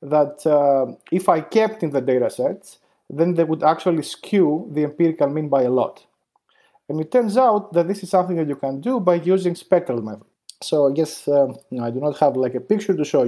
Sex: male